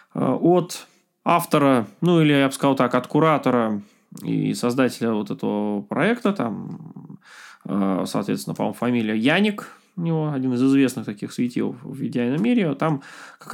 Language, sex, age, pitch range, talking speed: Russian, male, 20-39, 135-195 Hz, 140 wpm